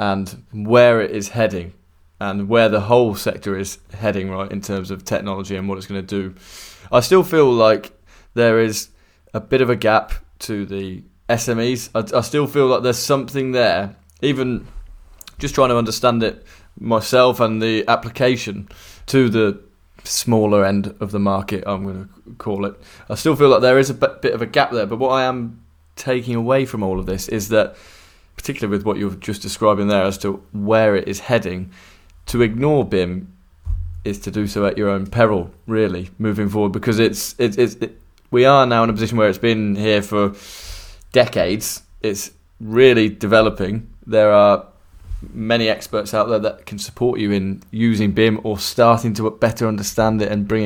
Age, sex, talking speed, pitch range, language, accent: 20-39, male, 185 wpm, 95-115 Hz, English, British